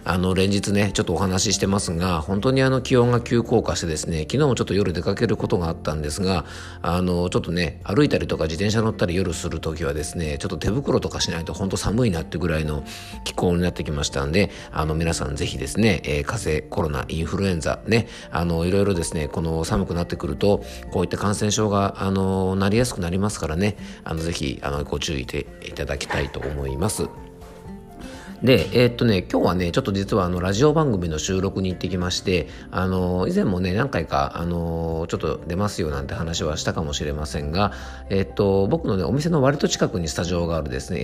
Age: 50-69